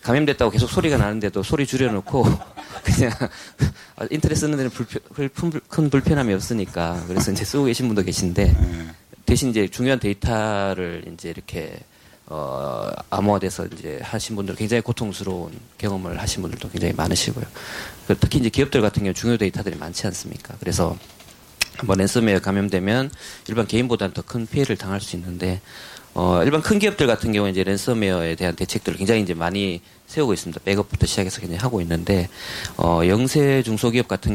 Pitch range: 95-120 Hz